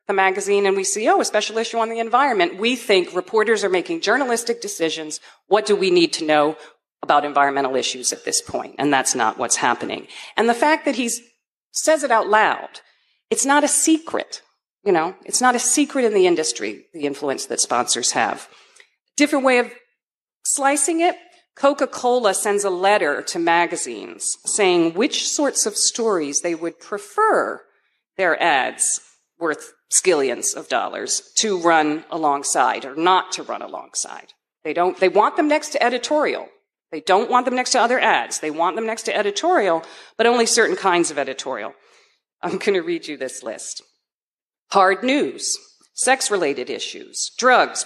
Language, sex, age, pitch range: English, female, 40-59, 180-300 Hz